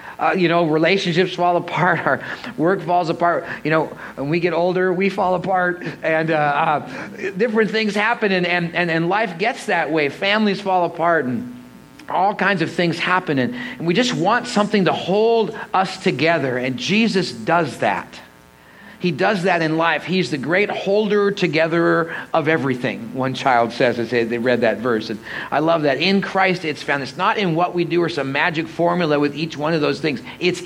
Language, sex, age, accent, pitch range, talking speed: English, male, 40-59, American, 145-185 Hz, 195 wpm